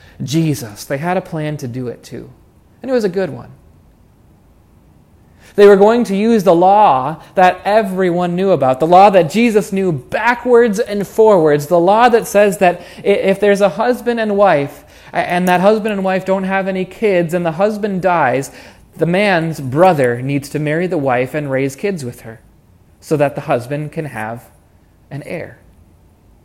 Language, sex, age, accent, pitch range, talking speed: English, male, 30-49, American, 135-215 Hz, 180 wpm